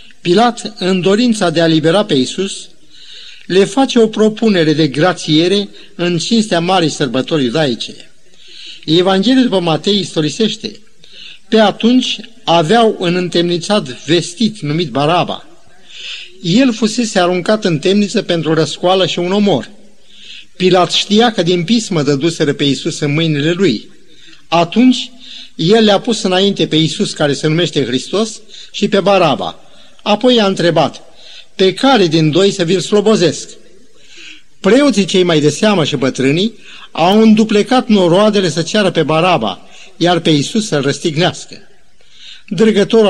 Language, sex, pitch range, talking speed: Romanian, male, 160-215 Hz, 135 wpm